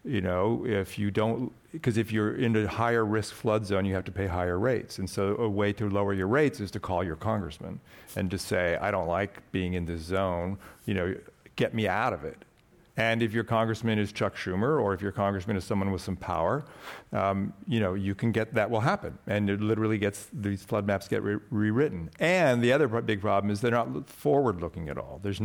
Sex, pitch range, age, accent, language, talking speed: male, 100-115 Hz, 50-69, American, English, 225 wpm